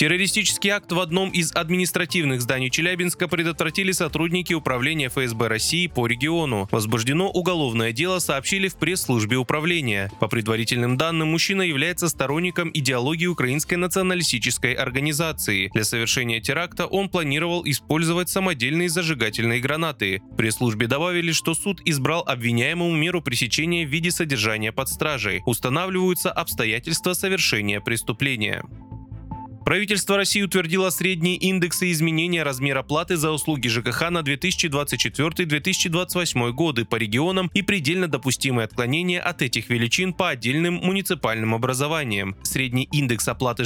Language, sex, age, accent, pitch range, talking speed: Russian, male, 20-39, native, 125-175 Hz, 120 wpm